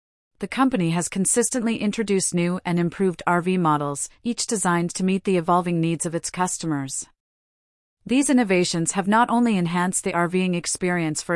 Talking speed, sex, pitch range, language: 160 wpm, female, 165-205 Hz, English